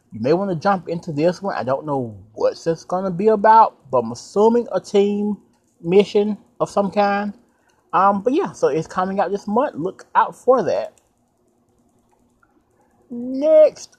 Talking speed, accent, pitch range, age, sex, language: 175 wpm, American, 135-205 Hz, 30-49, male, English